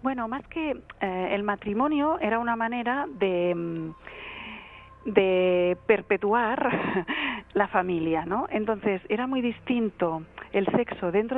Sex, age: female, 40-59